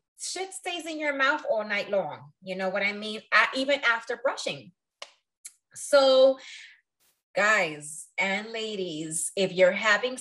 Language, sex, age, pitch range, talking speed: English, female, 20-39, 190-280 Hz, 135 wpm